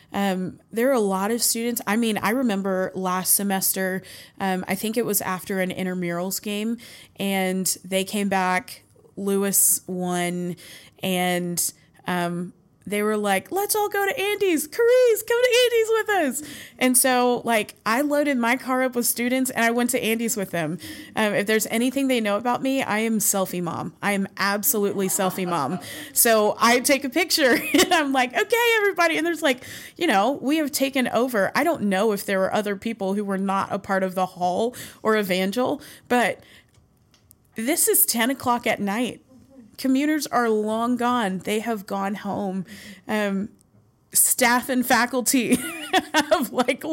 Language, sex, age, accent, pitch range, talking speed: English, female, 20-39, American, 190-255 Hz, 175 wpm